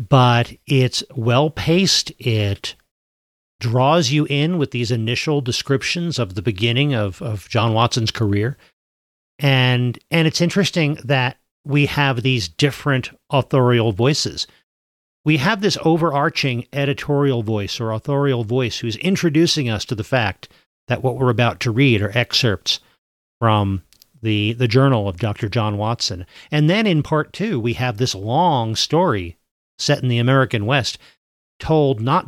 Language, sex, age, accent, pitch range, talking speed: English, male, 40-59, American, 110-145 Hz, 145 wpm